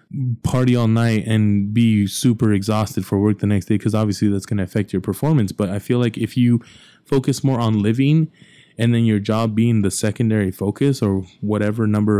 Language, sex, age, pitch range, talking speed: English, male, 20-39, 105-120 Hz, 200 wpm